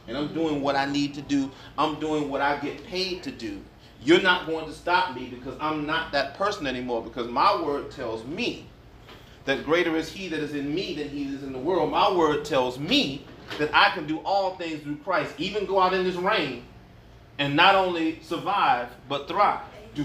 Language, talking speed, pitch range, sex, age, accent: English, 215 wpm, 145-190 Hz, male, 30-49, American